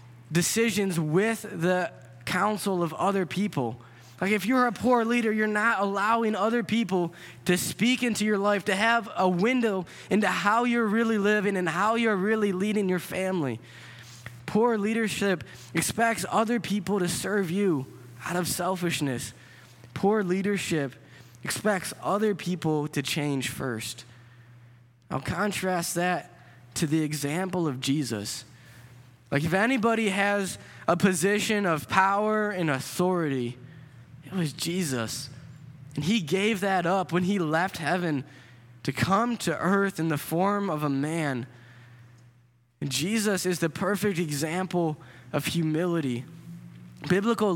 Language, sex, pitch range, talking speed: English, male, 140-205 Hz, 135 wpm